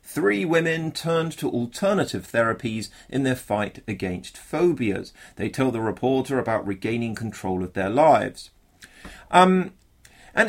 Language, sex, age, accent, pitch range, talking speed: English, male, 40-59, British, 105-145 Hz, 130 wpm